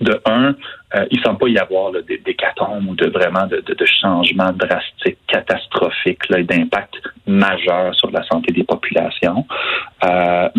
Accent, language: Canadian, French